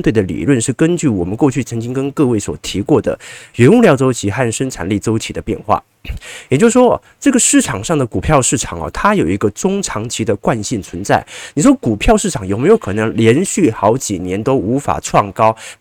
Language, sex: Chinese, male